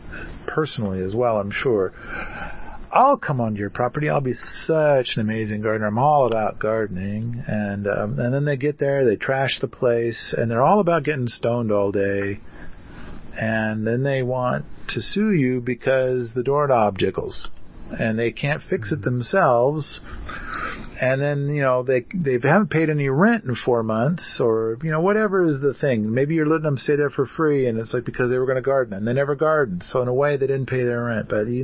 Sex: male